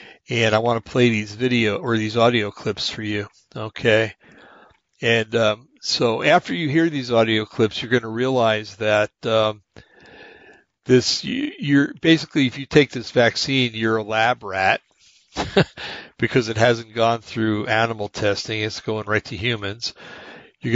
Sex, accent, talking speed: male, American, 155 wpm